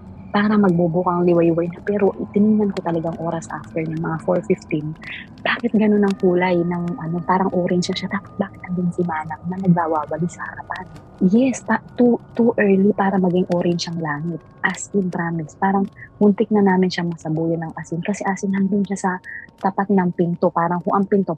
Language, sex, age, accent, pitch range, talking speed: Filipino, female, 20-39, native, 155-190 Hz, 180 wpm